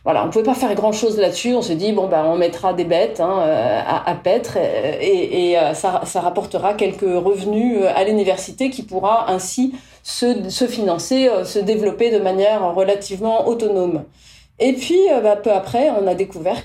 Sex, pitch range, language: female, 185-240 Hz, French